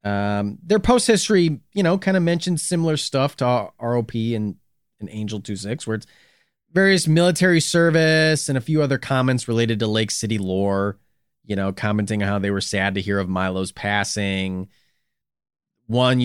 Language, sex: English, male